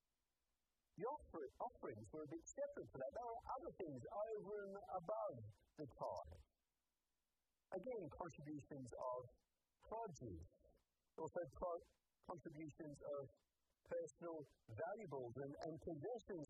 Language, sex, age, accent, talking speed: English, male, 50-69, American, 110 wpm